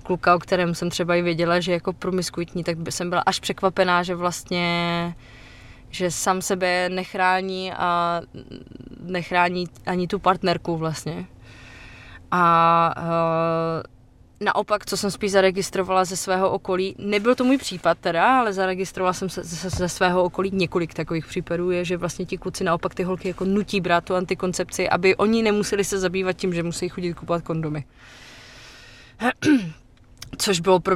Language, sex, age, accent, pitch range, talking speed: Czech, female, 20-39, native, 175-195 Hz, 155 wpm